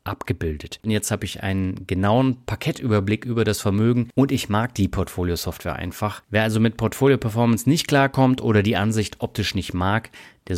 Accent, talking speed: German, 170 wpm